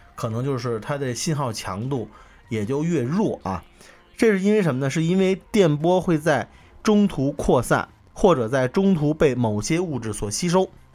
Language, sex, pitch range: Chinese, male, 120-175 Hz